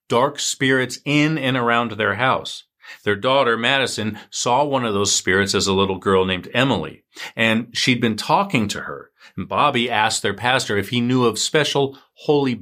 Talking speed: 180 wpm